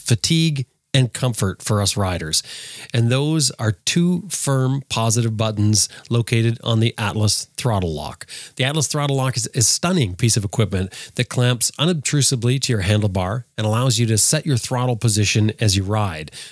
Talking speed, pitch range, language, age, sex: 165 wpm, 105-135 Hz, English, 40-59, male